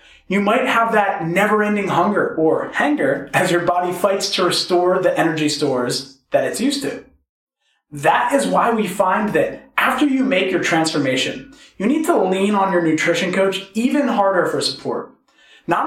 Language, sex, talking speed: English, male, 170 wpm